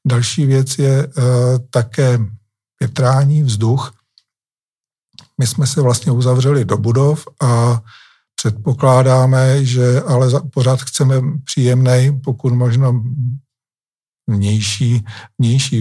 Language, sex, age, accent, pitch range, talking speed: Czech, male, 50-69, native, 120-135 Hz, 95 wpm